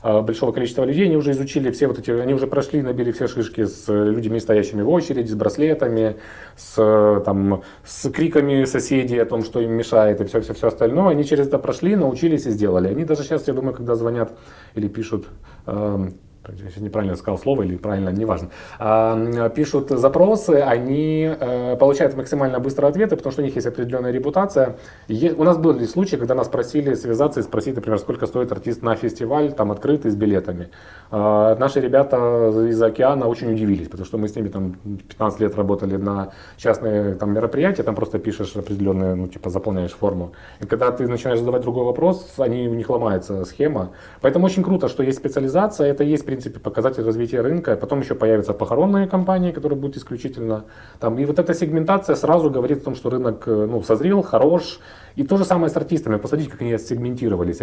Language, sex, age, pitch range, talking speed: Ukrainian, male, 30-49, 105-140 Hz, 180 wpm